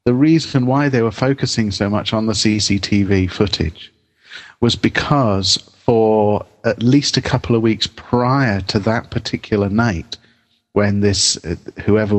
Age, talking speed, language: 40-59, 150 wpm, English